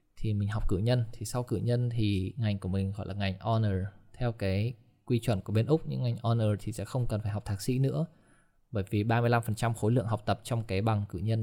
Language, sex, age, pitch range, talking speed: Vietnamese, male, 20-39, 100-120 Hz, 250 wpm